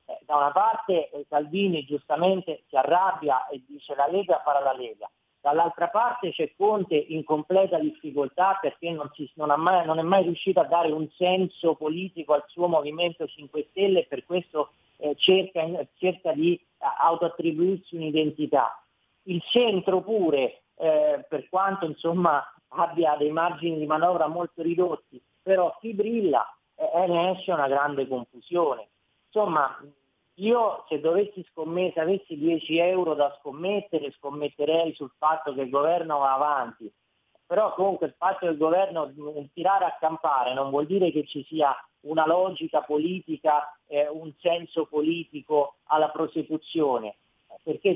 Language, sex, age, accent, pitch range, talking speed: Italian, male, 40-59, native, 145-180 Hz, 150 wpm